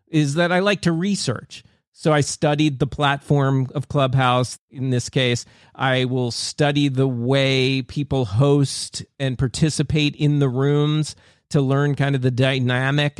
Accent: American